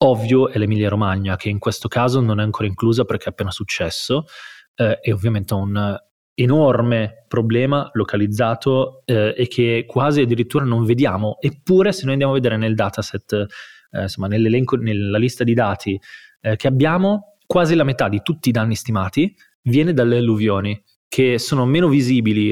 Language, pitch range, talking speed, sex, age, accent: Italian, 105-130 Hz, 170 wpm, male, 30-49, native